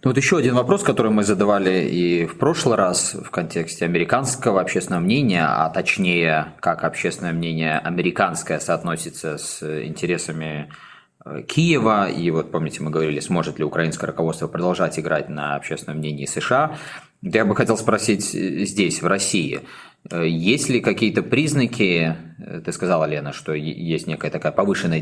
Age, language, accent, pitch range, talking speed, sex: 20-39, Russian, native, 80-100 Hz, 145 wpm, male